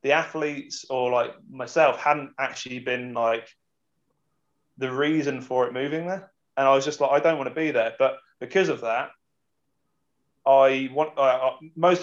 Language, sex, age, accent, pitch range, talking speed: English, male, 20-39, British, 125-140 Hz, 175 wpm